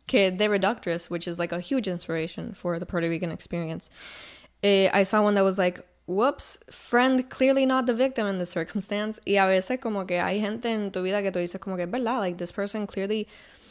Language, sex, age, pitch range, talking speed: Spanish, female, 10-29, 180-235 Hz, 215 wpm